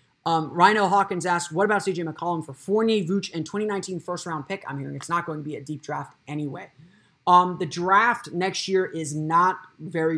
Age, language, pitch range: 20-39, English, 150-180 Hz